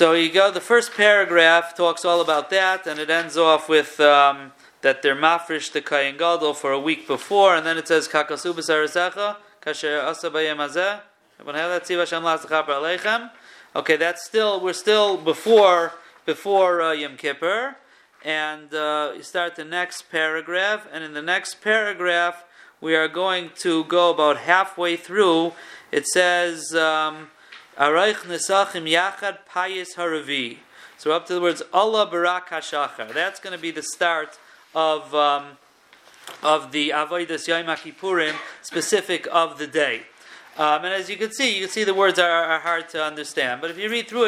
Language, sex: Italian, male